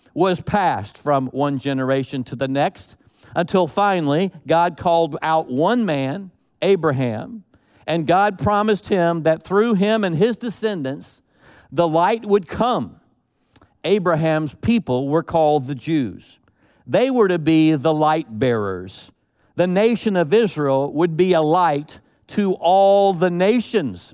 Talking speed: 135 wpm